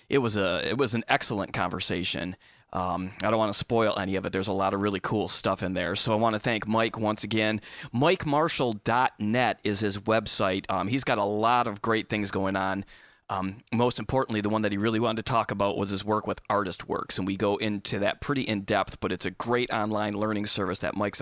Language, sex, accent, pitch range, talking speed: English, male, American, 100-135 Hz, 230 wpm